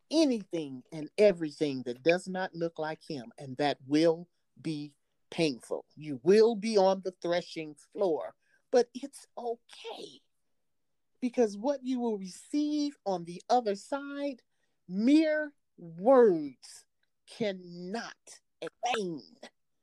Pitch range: 175-290 Hz